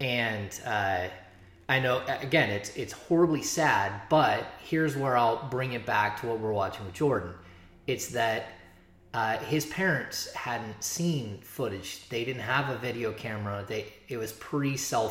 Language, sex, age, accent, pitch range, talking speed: English, male, 20-39, American, 100-125 Hz, 160 wpm